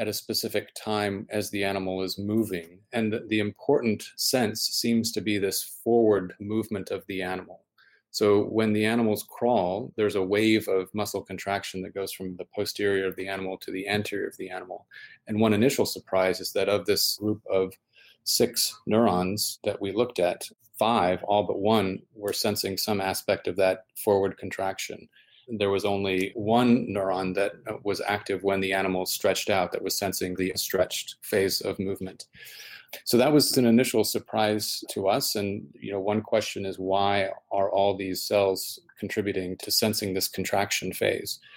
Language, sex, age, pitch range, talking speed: English, male, 30-49, 95-110 Hz, 175 wpm